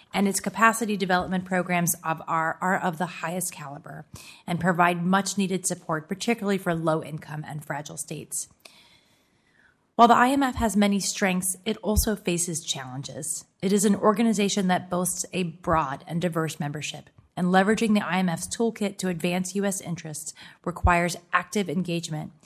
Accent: American